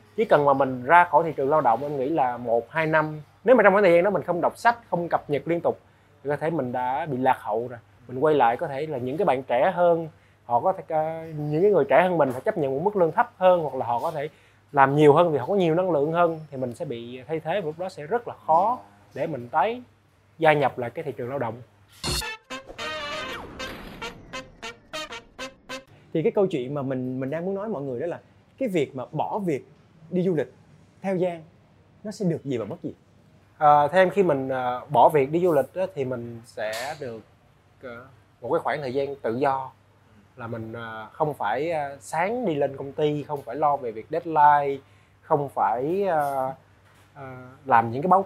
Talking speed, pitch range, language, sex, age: 230 wpm, 125-170 Hz, Vietnamese, male, 20-39